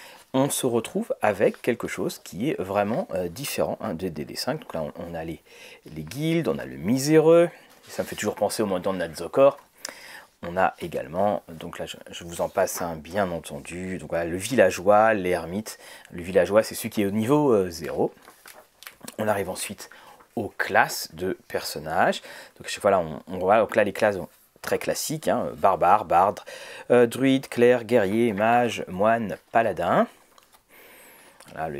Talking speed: 180 wpm